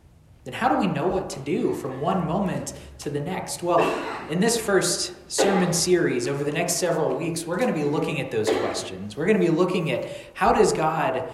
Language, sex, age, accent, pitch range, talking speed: English, male, 20-39, American, 135-180 Hz, 220 wpm